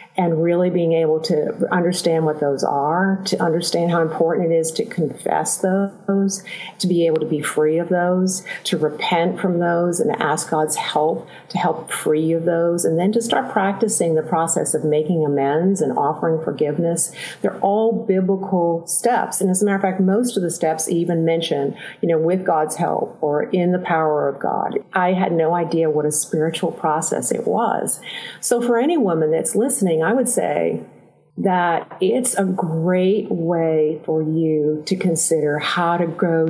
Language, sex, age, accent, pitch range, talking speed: English, female, 50-69, American, 160-195 Hz, 180 wpm